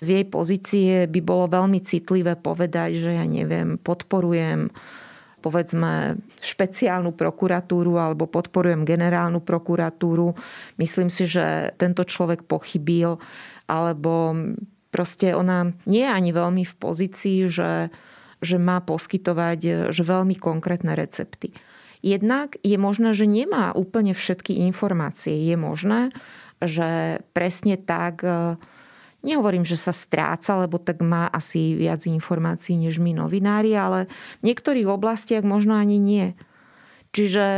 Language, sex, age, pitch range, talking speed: Slovak, female, 30-49, 170-195 Hz, 120 wpm